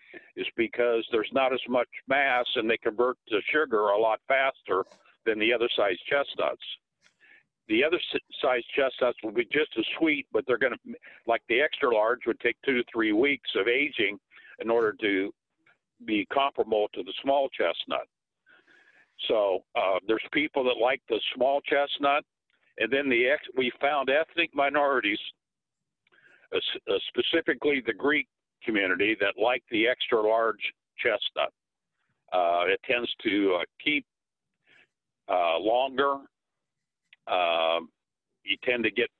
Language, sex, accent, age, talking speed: English, male, American, 60-79, 145 wpm